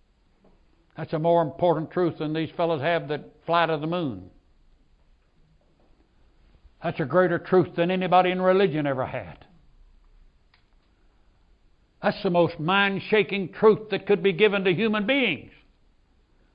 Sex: male